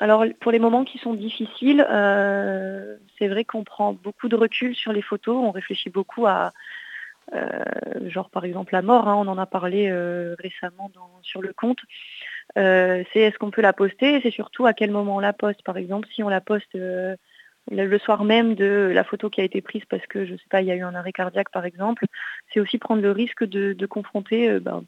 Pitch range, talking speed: 190-220 Hz, 230 wpm